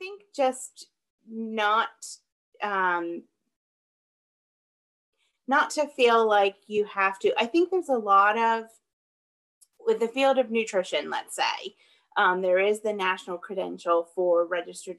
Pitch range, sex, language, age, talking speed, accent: 180-230 Hz, female, English, 30-49, 130 wpm, American